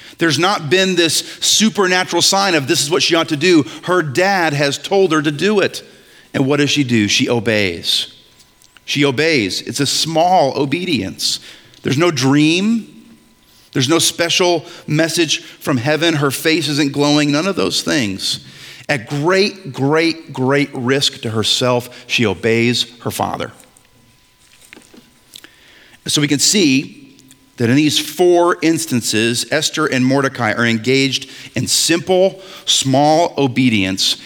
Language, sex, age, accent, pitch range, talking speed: English, male, 40-59, American, 125-165 Hz, 140 wpm